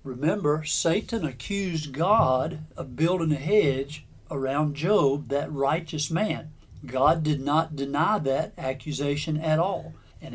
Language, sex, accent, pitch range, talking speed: English, male, American, 130-160 Hz, 130 wpm